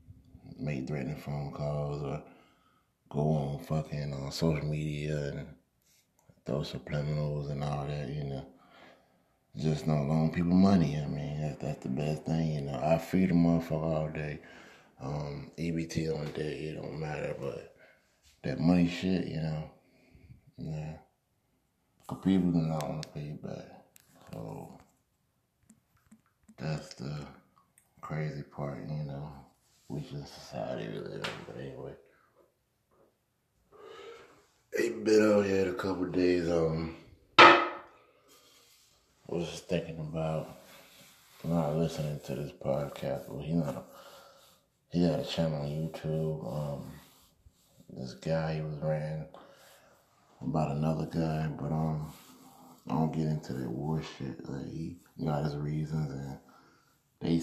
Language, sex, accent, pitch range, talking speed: English, male, American, 75-85 Hz, 135 wpm